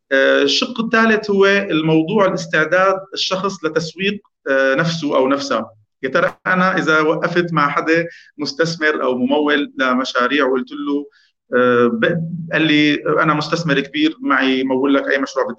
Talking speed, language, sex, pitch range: 125 wpm, Arabic, male, 140-180 Hz